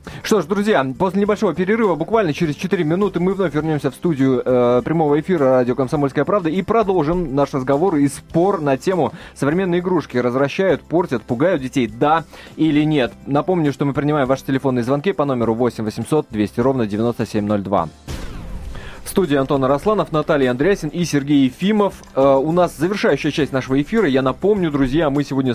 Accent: native